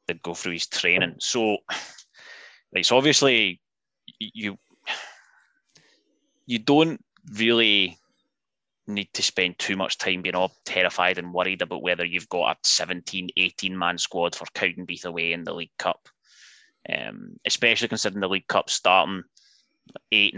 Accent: British